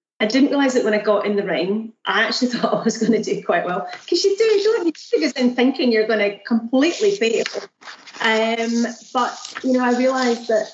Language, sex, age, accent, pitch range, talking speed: English, female, 30-49, British, 180-235 Hz, 225 wpm